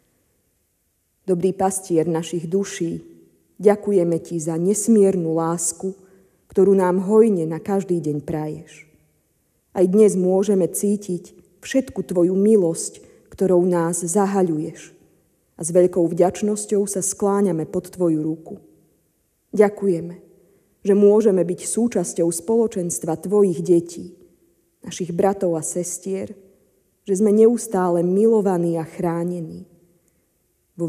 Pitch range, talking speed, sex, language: 165-195 Hz, 105 wpm, female, Slovak